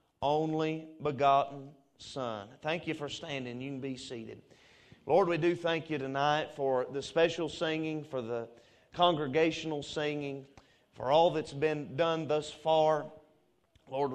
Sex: male